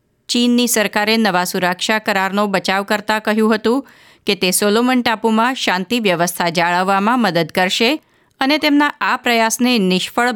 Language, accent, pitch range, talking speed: Gujarati, native, 185-235 Hz, 135 wpm